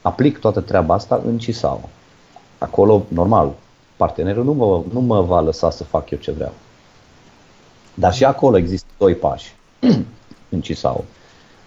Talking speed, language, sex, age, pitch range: 145 wpm, Romanian, male, 30-49, 90-120 Hz